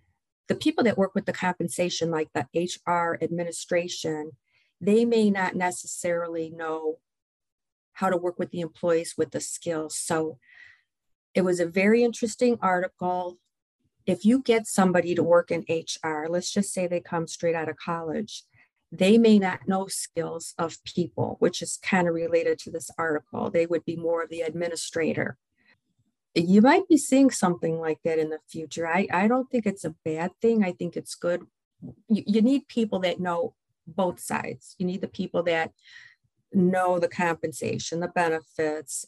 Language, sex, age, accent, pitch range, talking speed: English, female, 40-59, American, 165-195 Hz, 170 wpm